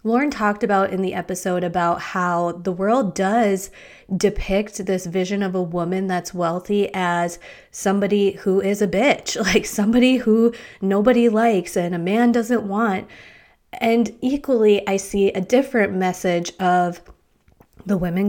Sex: female